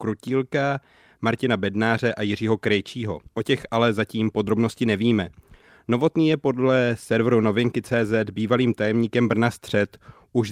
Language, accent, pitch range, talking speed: Czech, native, 110-130 Hz, 125 wpm